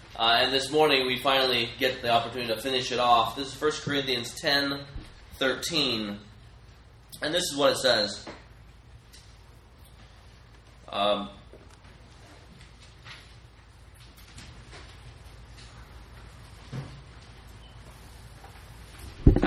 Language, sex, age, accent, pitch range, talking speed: English, male, 30-49, American, 115-170 Hz, 80 wpm